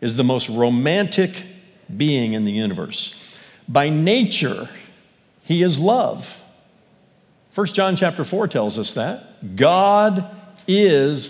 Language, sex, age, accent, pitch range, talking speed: English, male, 50-69, American, 140-200 Hz, 115 wpm